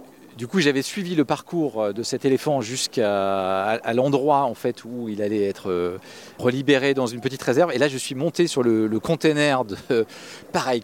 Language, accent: French, French